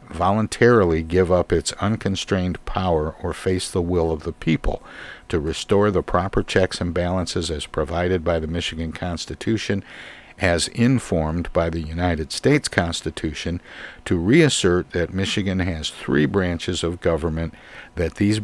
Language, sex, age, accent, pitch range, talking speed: English, male, 60-79, American, 80-95 Hz, 145 wpm